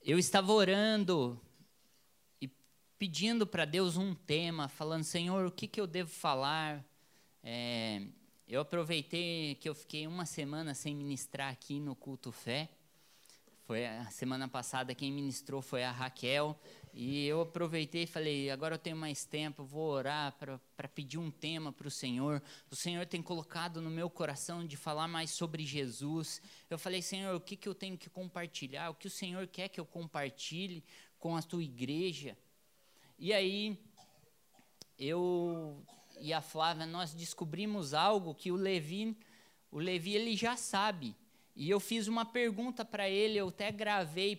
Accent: Brazilian